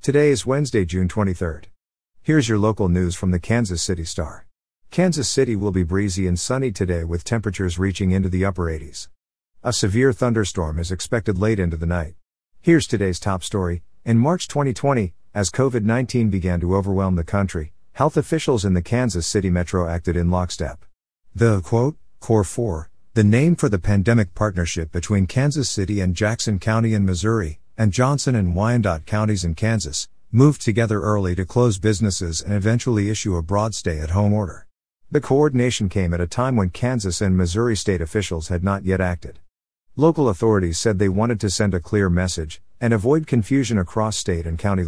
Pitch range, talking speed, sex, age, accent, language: 90-115 Hz, 180 wpm, male, 50-69, American, English